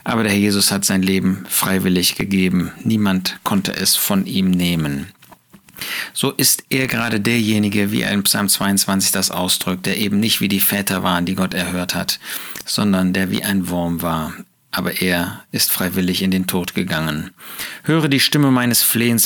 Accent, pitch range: German, 95-120 Hz